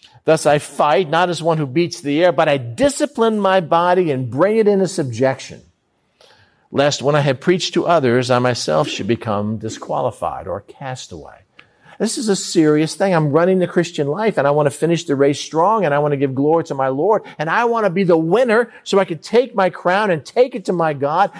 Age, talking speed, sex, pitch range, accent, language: 50-69, 225 wpm, male, 140-195 Hz, American, English